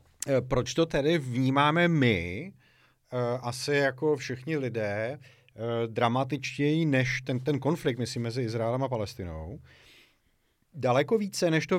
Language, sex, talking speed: Czech, male, 115 wpm